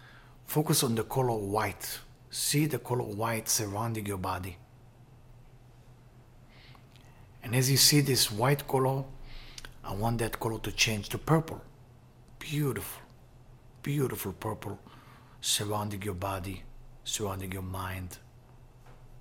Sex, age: male, 60-79